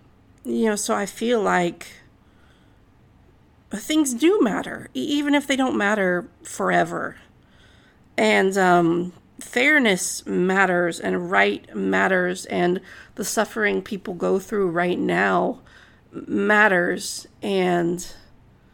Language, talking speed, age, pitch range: English, 100 wpm, 40-59, 190-245 Hz